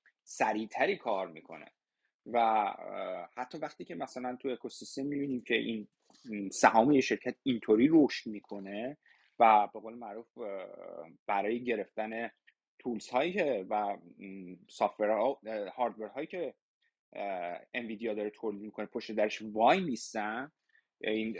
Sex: male